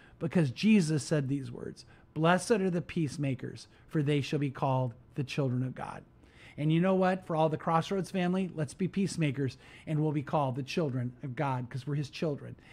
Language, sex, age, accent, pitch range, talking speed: English, male, 50-69, American, 140-180 Hz, 200 wpm